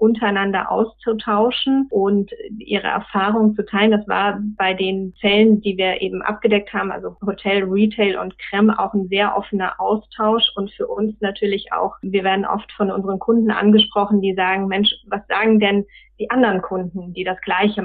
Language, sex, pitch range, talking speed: German, female, 195-215 Hz, 170 wpm